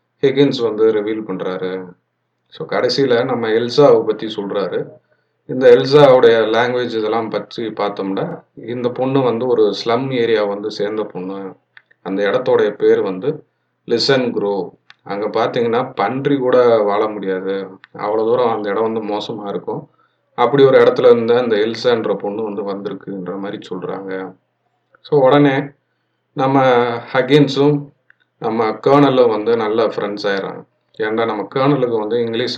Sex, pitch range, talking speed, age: male, 105-155 Hz, 130 wpm, 30-49